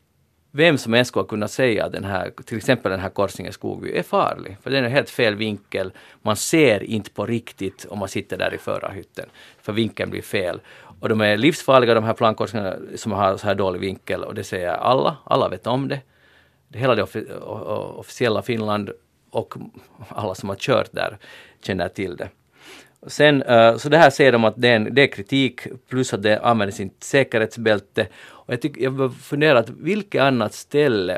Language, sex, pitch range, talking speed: Swedish, male, 105-140 Hz, 195 wpm